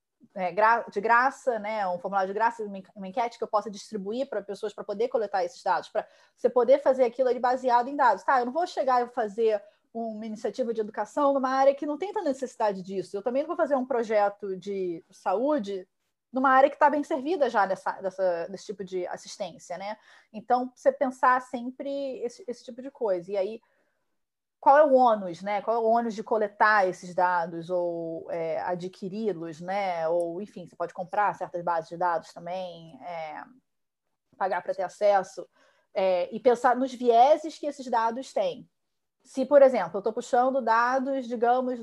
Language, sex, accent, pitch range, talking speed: Portuguese, female, Brazilian, 190-260 Hz, 185 wpm